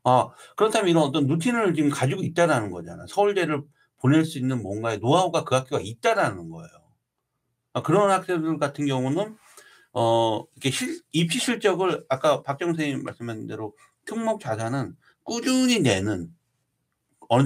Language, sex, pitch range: Korean, male, 115-175 Hz